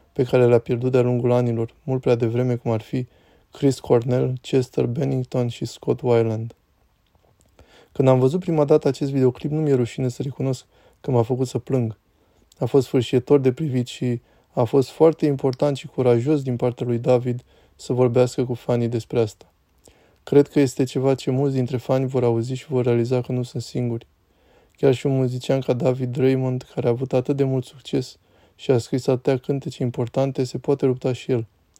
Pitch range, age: 120-135 Hz, 20-39